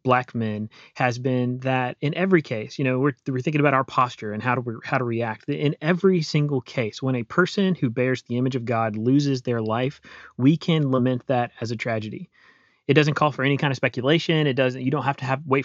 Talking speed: 240 wpm